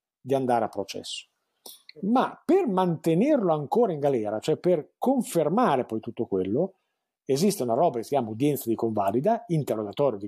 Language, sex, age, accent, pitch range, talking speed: Italian, male, 50-69, native, 115-190 Hz, 160 wpm